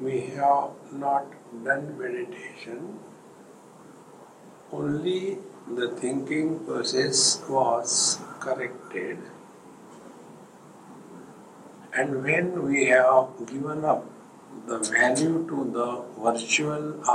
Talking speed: 75 wpm